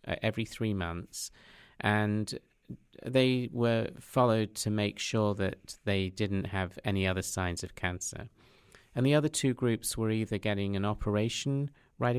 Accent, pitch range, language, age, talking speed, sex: British, 95-120 Hz, English, 50-69, 150 wpm, male